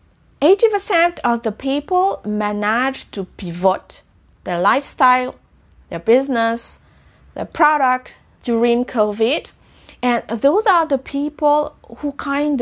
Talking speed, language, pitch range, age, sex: 110 wpm, English, 220-275 Hz, 40-59, female